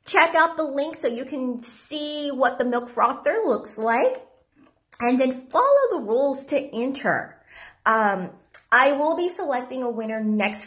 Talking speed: 165 wpm